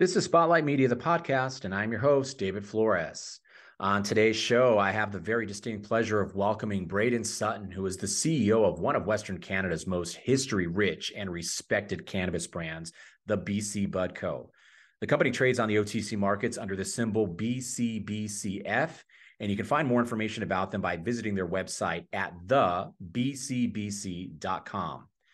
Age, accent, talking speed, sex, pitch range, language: 30-49, American, 165 wpm, male, 100-125 Hz, English